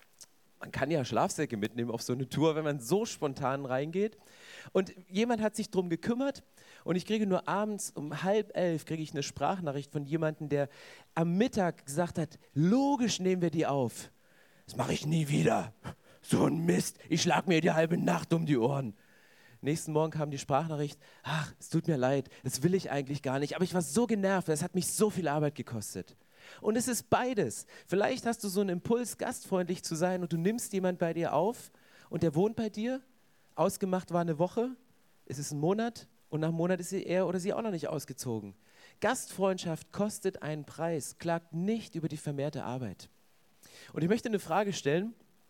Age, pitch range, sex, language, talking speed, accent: 40-59, 145-195 Hz, male, German, 200 wpm, German